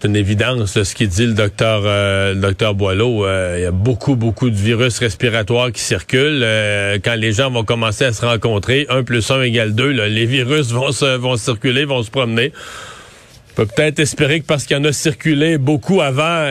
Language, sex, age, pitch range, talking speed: French, male, 40-59, 115-145 Hz, 220 wpm